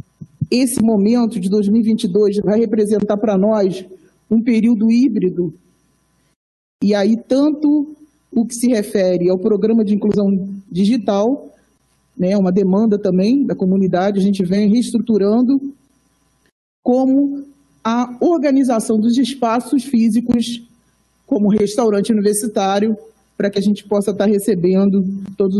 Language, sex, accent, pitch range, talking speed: Portuguese, male, Brazilian, 200-240 Hz, 115 wpm